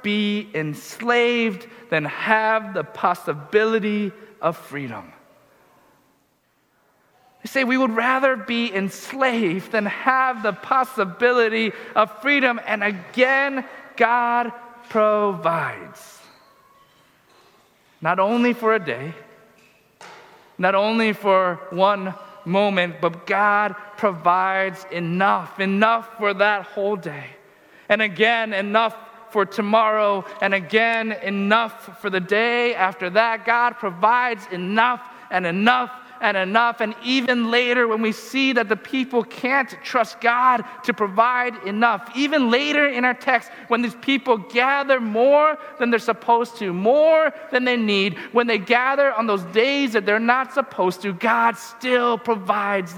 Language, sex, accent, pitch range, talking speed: English, male, American, 200-245 Hz, 125 wpm